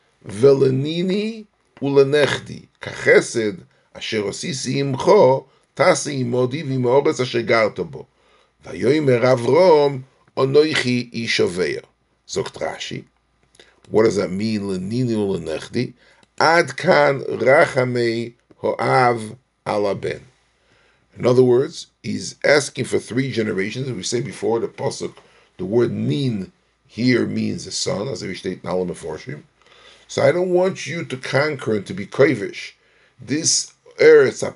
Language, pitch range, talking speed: English, 110-140 Hz, 80 wpm